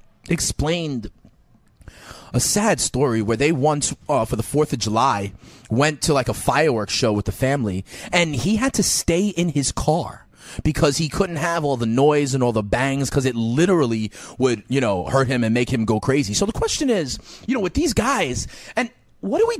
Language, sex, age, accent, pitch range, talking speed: English, male, 30-49, American, 130-185 Hz, 205 wpm